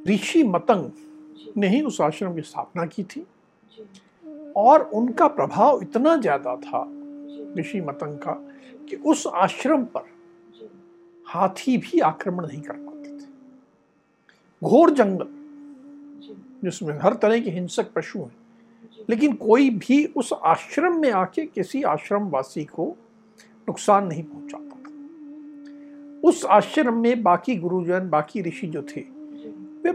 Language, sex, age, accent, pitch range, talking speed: Hindi, male, 60-79, native, 200-300 Hz, 125 wpm